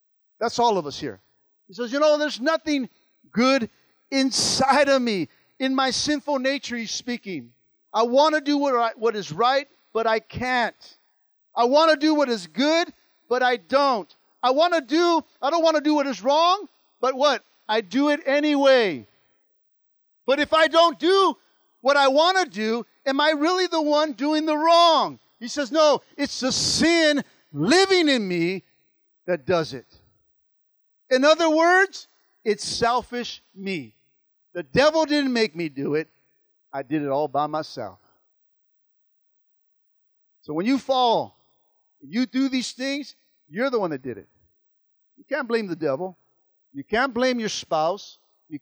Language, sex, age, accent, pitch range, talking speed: English, male, 50-69, American, 205-295 Hz, 165 wpm